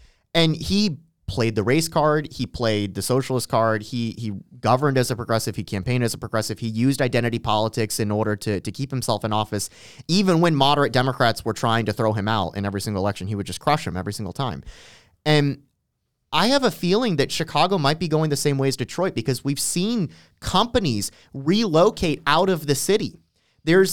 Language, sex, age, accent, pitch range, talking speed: English, male, 30-49, American, 115-165 Hz, 205 wpm